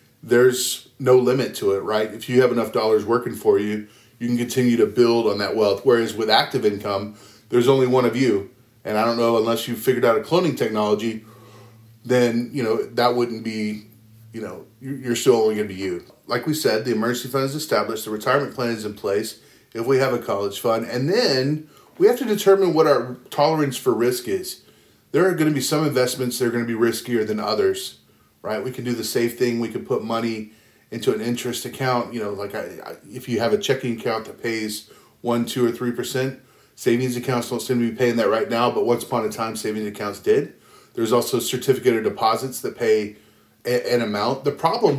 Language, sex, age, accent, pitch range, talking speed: English, male, 30-49, American, 110-130 Hz, 215 wpm